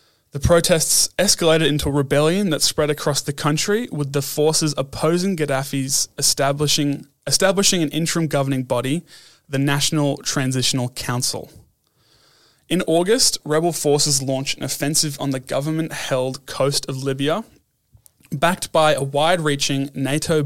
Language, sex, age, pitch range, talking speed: English, male, 20-39, 135-155 Hz, 130 wpm